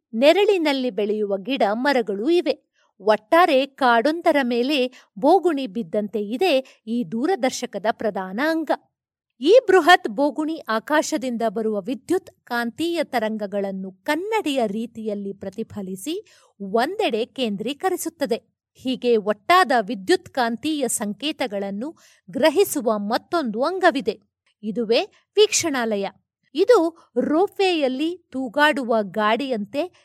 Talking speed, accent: 85 wpm, native